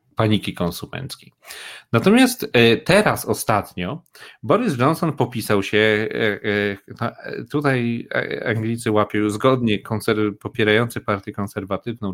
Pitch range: 100-120 Hz